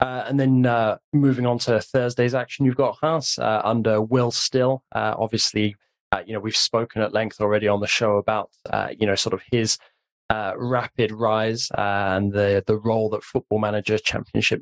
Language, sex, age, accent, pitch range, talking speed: English, male, 20-39, British, 105-120 Hz, 195 wpm